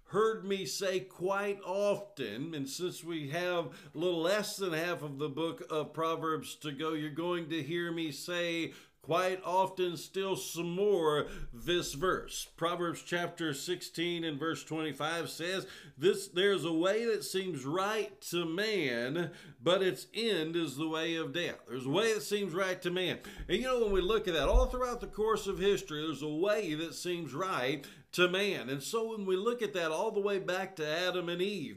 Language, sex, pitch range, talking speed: English, male, 150-185 Hz, 195 wpm